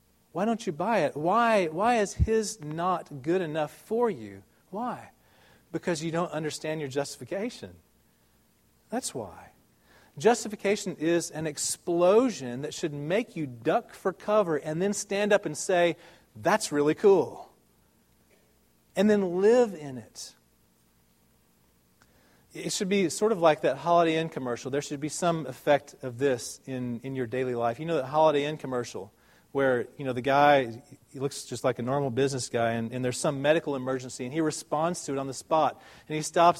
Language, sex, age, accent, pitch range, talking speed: English, male, 40-59, American, 130-175 Hz, 175 wpm